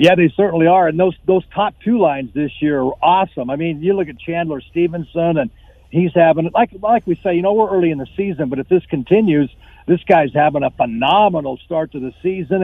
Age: 50-69